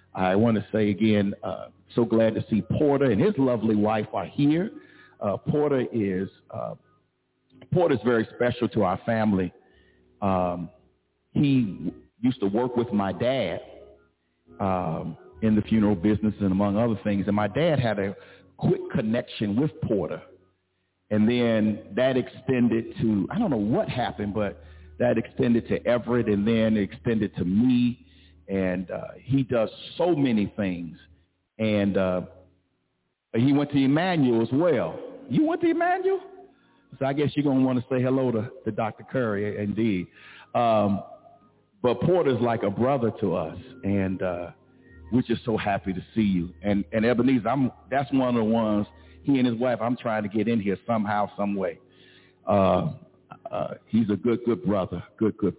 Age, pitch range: 50-69, 95-120 Hz